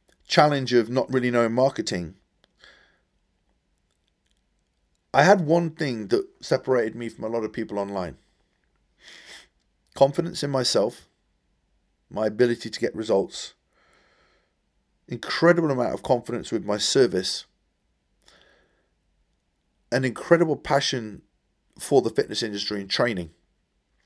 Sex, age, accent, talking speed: male, 30-49, British, 105 wpm